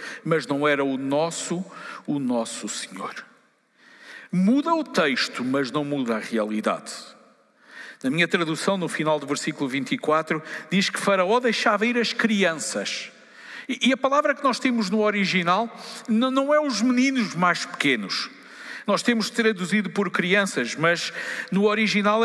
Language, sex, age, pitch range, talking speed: Portuguese, male, 50-69, 180-255 Hz, 145 wpm